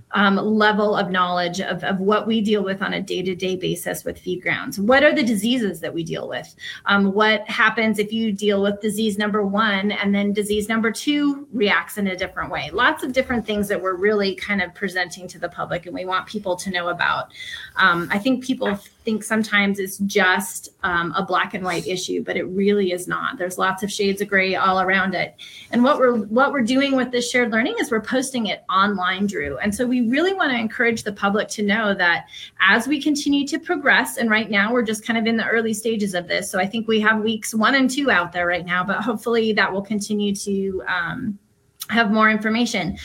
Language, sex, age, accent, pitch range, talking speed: English, female, 30-49, American, 190-230 Hz, 225 wpm